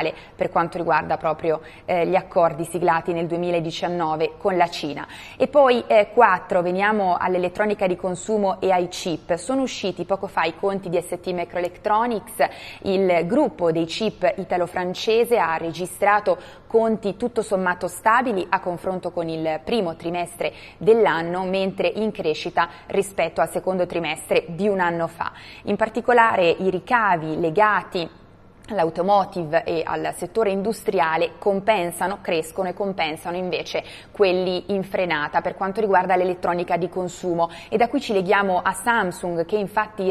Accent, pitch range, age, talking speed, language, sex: native, 170-200 Hz, 20-39, 140 wpm, Italian, female